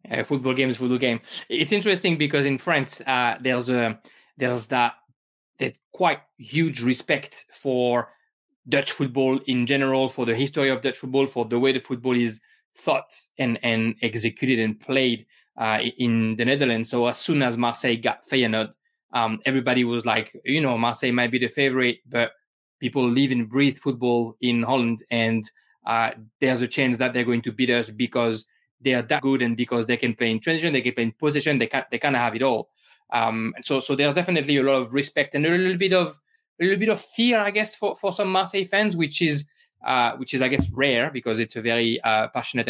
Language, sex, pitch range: English, male, 120-140 Hz